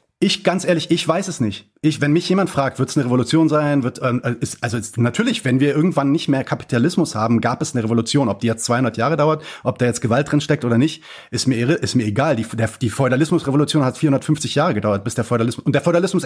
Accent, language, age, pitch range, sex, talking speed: German, German, 30-49, 120-160 Hz, male, 245 wpm